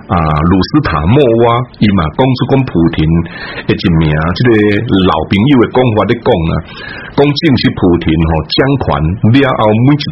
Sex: male